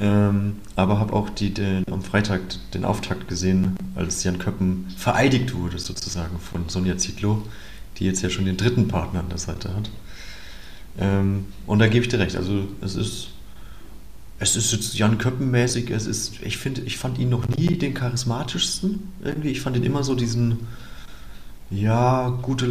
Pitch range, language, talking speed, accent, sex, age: 100-125 Hz, German, 170 wpm, German, male, 30-49